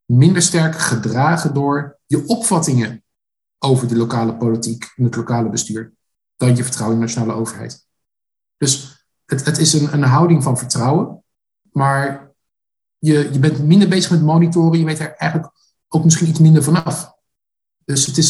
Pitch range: 130-160 Hz